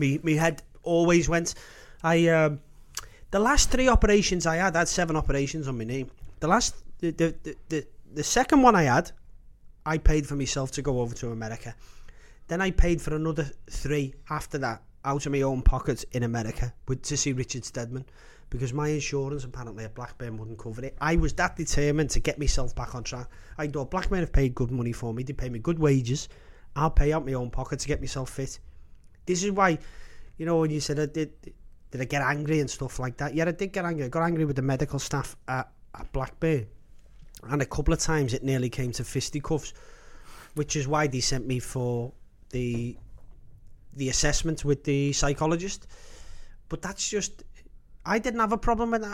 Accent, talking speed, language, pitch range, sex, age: British, 210 wpm, English, 125-165 Hz, male, 30-49